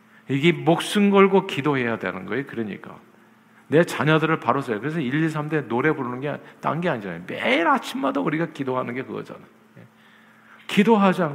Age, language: 50-69, Korean